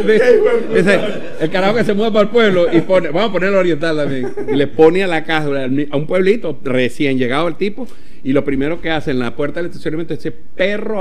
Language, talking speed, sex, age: Spanish, 245 wpm, male, 60-79